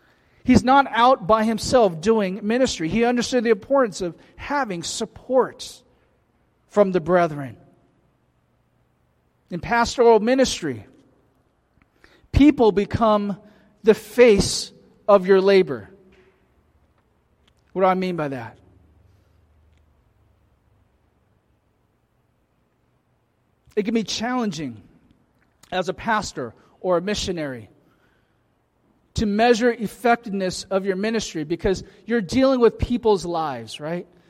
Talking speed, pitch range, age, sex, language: 100 wpm, 170-230 Hz, 40-59, male, English